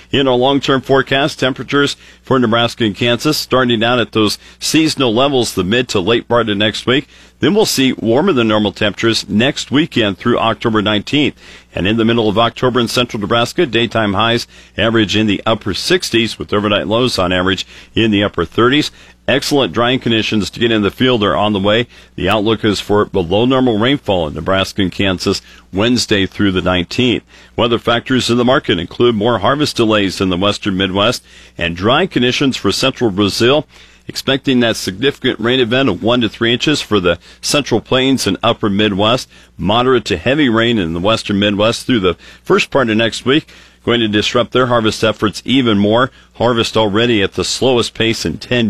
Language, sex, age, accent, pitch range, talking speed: English, male, 50-69, American, 100-125 Hz, 190 wpm